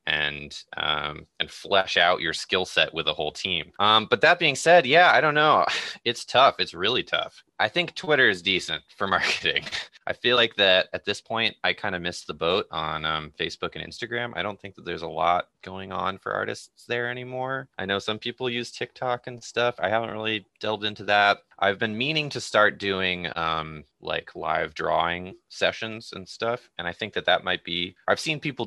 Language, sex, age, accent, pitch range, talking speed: English, male, 20-39, American, 85-110 Hz, 210 wpm